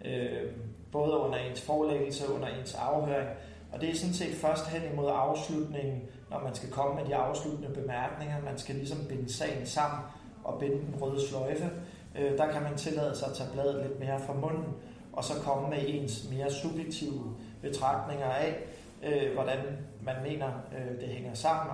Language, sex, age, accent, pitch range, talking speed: Danish, male, 30-49, native, 130-150 Hz, 185 wpm